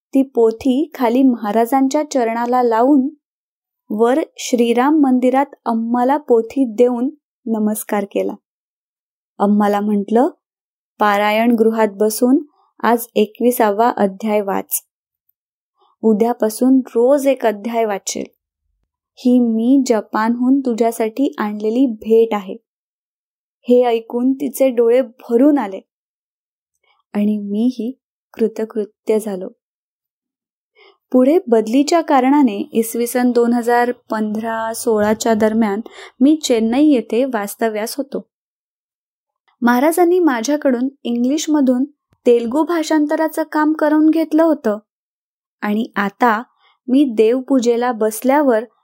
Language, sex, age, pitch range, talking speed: Marathi, female, 20-39, 225-275 Hz, 95 wpm